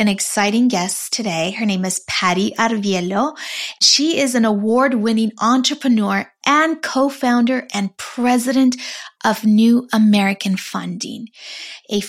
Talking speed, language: 115 wpm, English